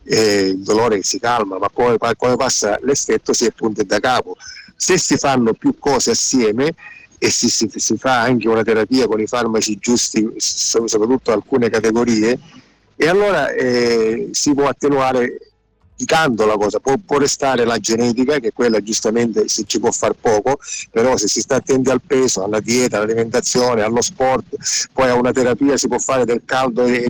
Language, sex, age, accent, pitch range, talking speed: Italian, male, 50-69, native, 115-130 Hz, 175 wpm